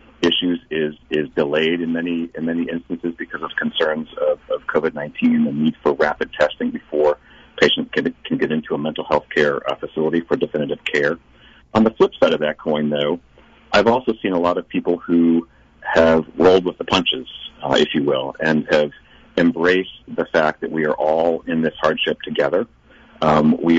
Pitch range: 75-90 Hz